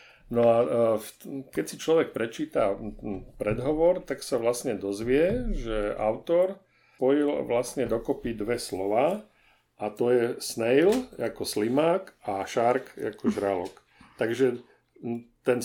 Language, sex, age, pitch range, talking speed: Slovak, male, 50-69, 115-140 Hz, 115 wpm